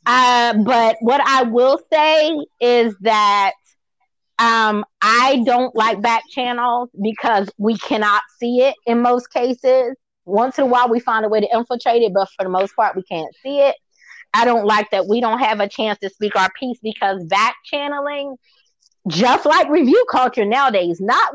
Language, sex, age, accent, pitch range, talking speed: English, female, 20-39, American, 215-275 Hz, 180 wpm